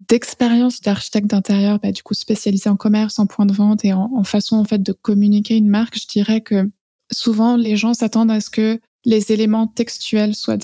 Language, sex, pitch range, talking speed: French, female, 210-235 Hz, 210 wpm